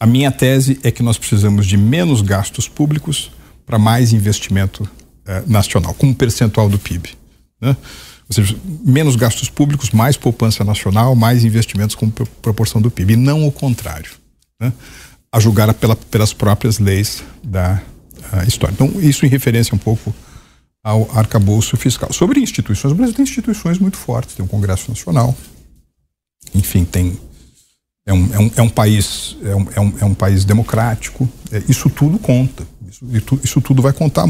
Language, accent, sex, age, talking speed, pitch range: Portuguese, Brazilian, male, 60-79, 155 wpm, 100-125 Hz